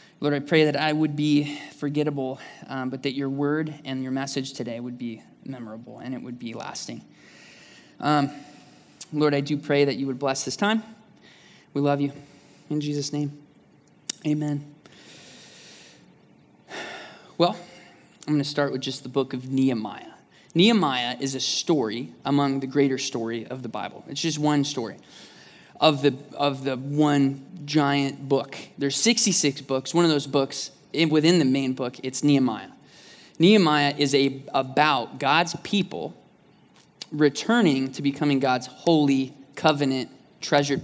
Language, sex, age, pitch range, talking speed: English, male, 20-39, 135-150 Hz, 150 wpm